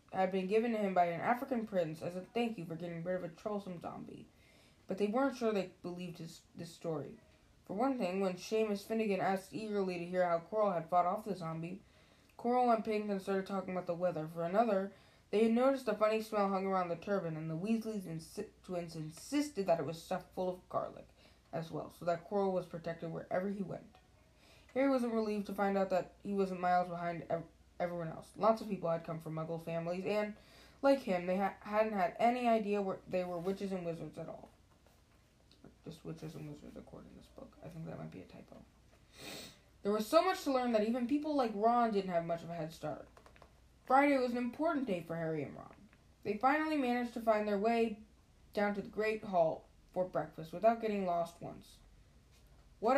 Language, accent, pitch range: English, American, 170-220 Hz